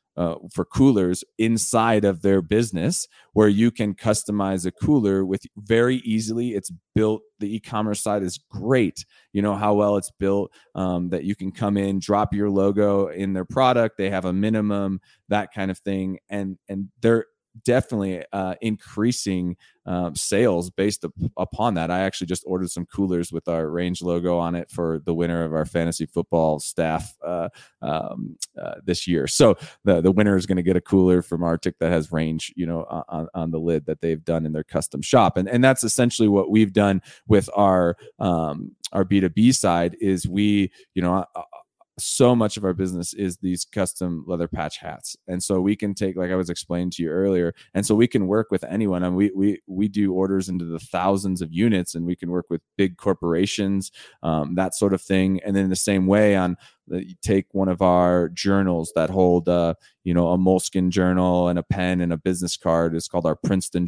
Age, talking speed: 30-49, 210 wpm